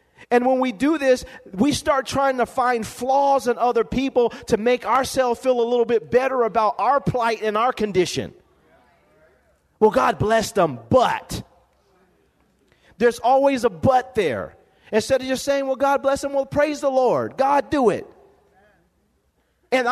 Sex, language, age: male, English, 40-59